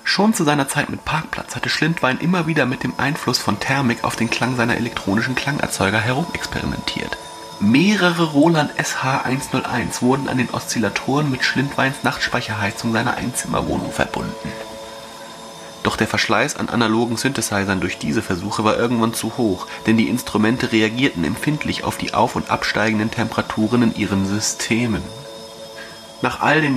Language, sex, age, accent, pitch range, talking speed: German, male, 30-49, German, 105-120 Hz, 145 wpm